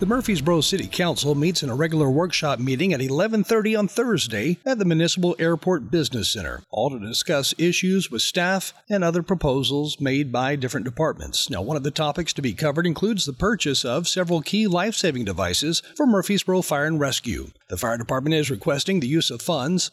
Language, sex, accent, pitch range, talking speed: English, male, American, 145-190 Hz, 190 wpm